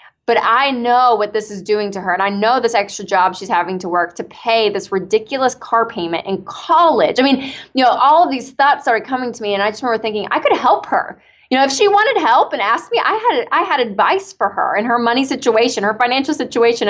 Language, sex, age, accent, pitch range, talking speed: English, female, 20-39, American, 190-260 Hz, 250 wpm